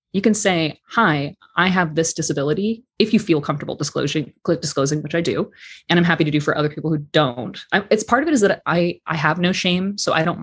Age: 20-39